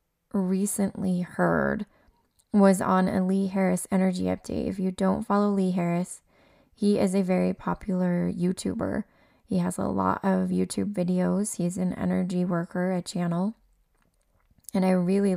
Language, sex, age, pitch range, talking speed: English, female, 20-39, 175-195 Hz, 145 wpm